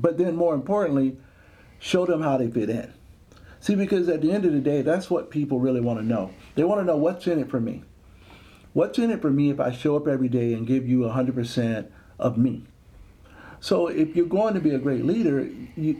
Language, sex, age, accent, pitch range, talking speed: English, male, 50-69, American, 120-160 Hz, 230 wpm